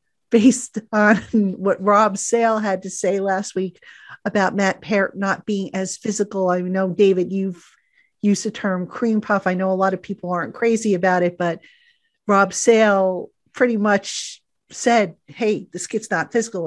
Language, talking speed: English, 170 wpm